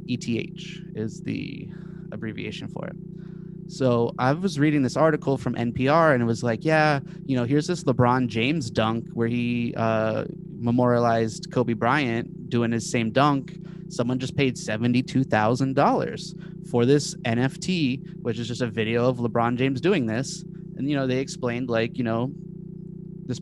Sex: male